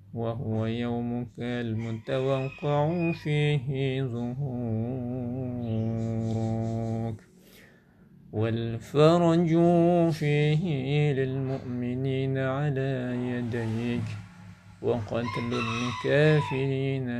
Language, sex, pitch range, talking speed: Indonesian, male, 115-140 Hz, 40 wpm